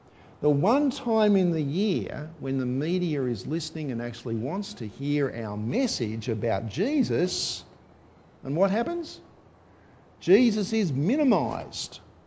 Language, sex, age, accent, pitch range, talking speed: English, male, 50-69, Australian, 120-180 Hz, 125 wpm